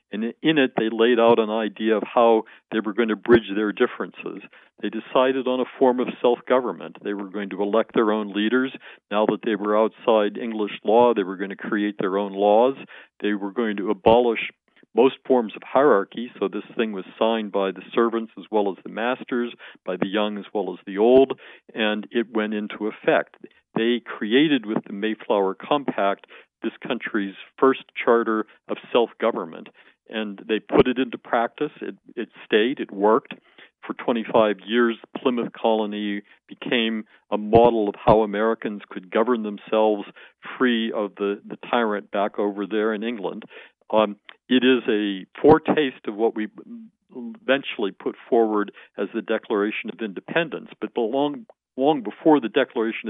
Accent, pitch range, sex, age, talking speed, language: American, 105-120 Hz, male, 50-69, 170 wpm, English